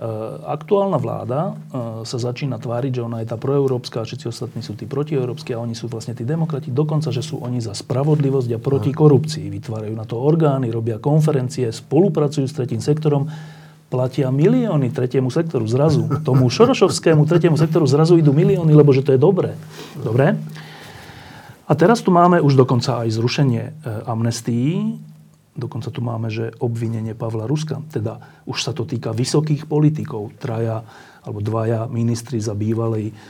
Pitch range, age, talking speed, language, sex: 120-155 Hz, 40-59, 155 wpm, Slovak, male